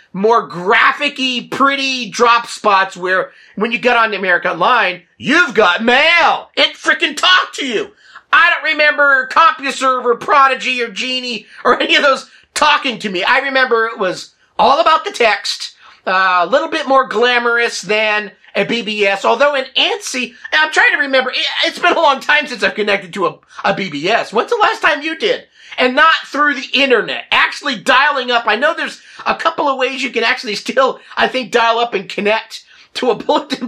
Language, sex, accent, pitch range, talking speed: English, male, American, 225-290 Hz, 190 wpm